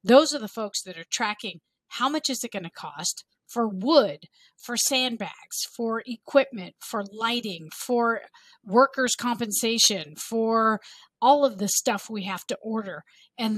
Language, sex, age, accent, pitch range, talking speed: English, female, 50-69, American, 195-250 Hz, 155 wpm